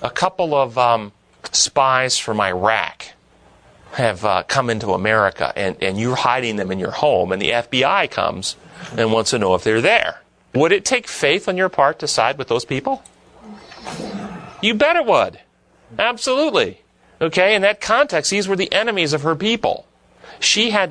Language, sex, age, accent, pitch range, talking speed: English, male, 40-59, American, 120-195 Hz, 175 wpm